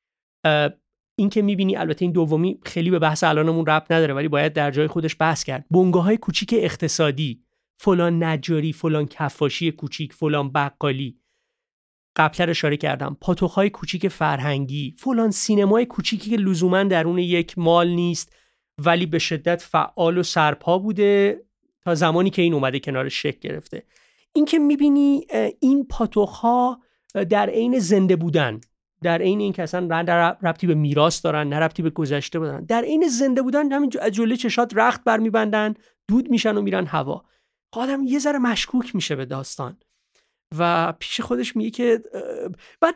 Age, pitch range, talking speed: 30-49, 160-225 Hz, 155 wpm